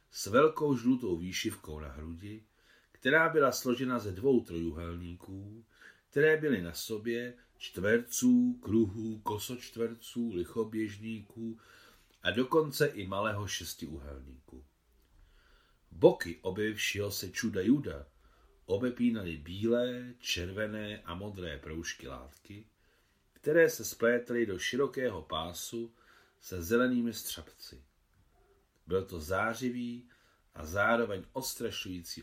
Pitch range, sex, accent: 85-115 Hz, male, native